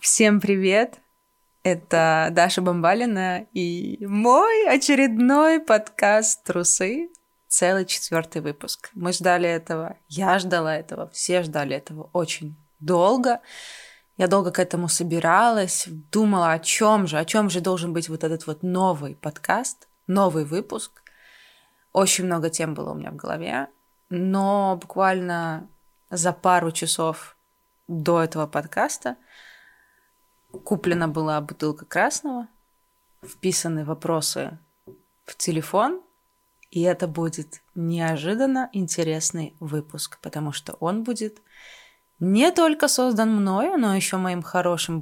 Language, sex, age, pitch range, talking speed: Russian, female, 20-39, 165-215 Hz, 115 wpm